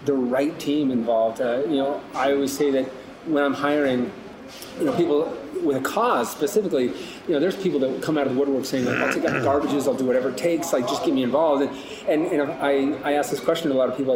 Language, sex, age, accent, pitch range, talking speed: English, male, 30-49, American, 130-160 Hz, 260 wpm